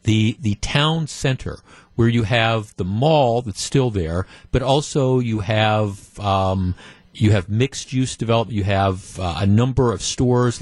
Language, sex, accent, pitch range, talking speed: English, male, American, 105-130 Hz, 160 wpm